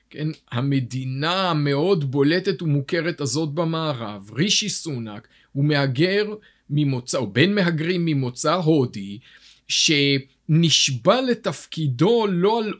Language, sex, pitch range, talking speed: Hebrew, male, 150-190 Hz, 95 wpm